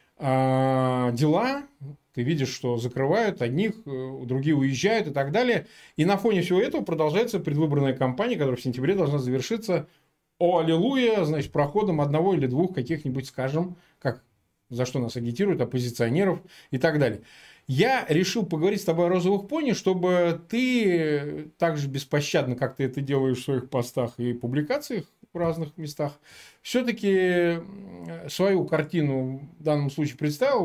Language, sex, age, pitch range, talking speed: Russian, male, 20-39, 135-175 Hz, 145 wpm